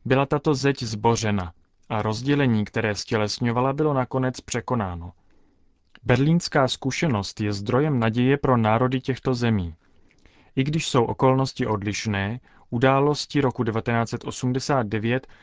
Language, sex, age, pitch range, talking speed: Czech, male, 30-49, 110-130 Hz, 110 wpm